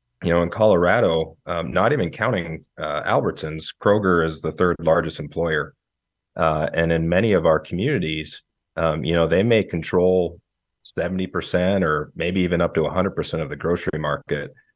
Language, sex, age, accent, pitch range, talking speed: English, male, 30-49, American, 80-90 Hz, 165 wpm